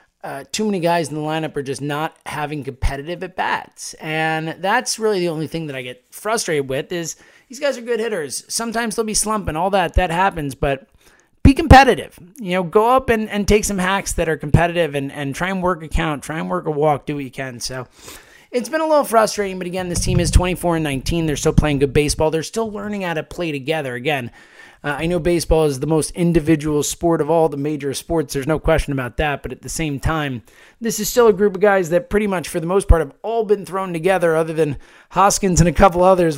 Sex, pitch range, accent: male, 145-190 Hz, American